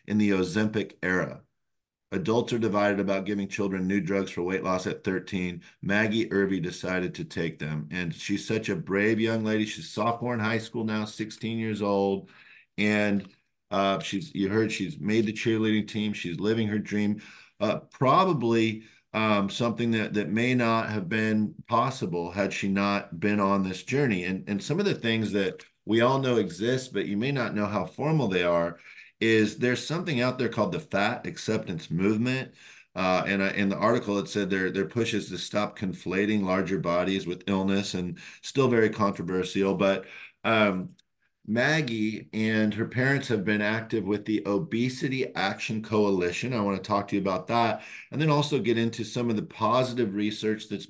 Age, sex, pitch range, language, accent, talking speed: 50-69, male, 95-115 Hz, English, American, 185 wpm